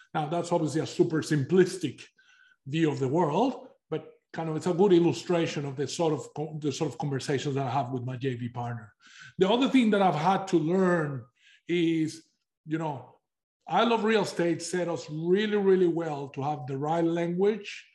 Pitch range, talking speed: 140-180 Hz, 190 wpm